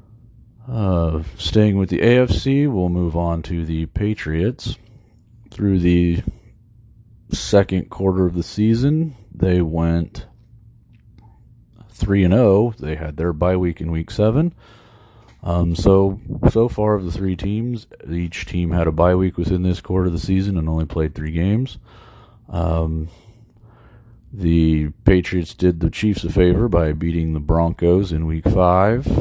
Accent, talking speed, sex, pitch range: American, 145 wpm, male, 85-110 Hz